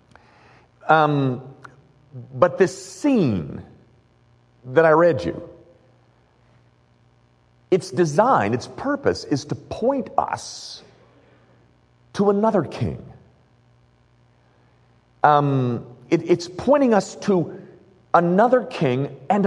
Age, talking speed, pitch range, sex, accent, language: 50-69, 85 wpm, 120-195 Hz, male, American, English